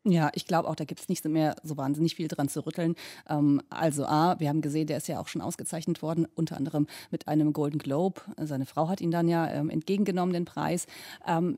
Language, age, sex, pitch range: German, 30-49, female, 160-185 Hz